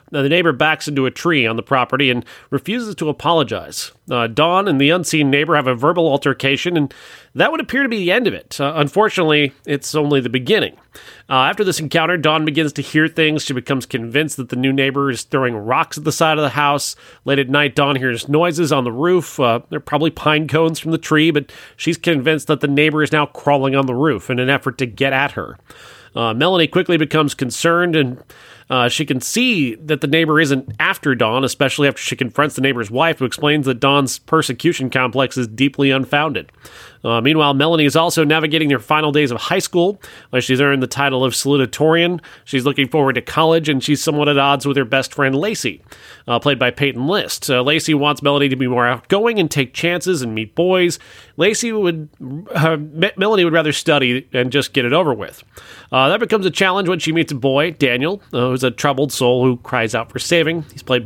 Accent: American